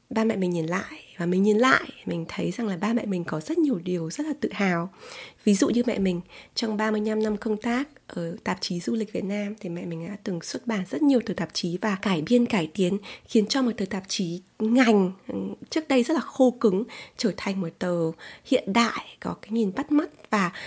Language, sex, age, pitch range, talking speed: Vietnamese, female, 20-39, 180-235 Hz, 240 wpm